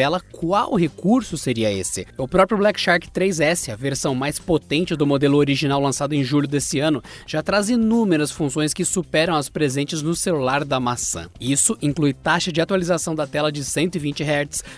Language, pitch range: Portuguese, 145-185 Hz